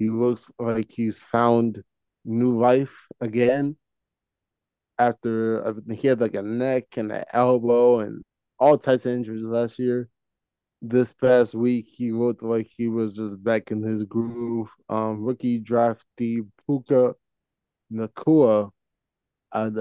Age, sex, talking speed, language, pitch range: 20-39, male, 130 wpm, English, 110-125 Hz